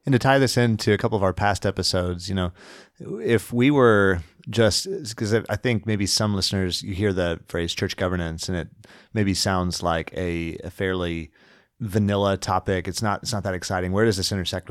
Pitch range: 85-105 Hz